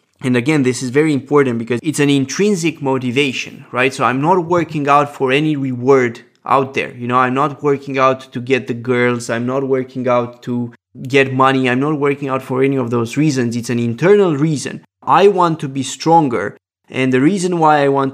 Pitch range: 120-140 Hz